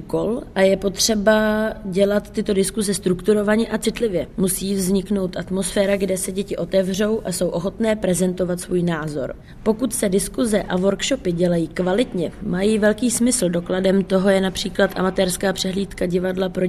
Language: Czech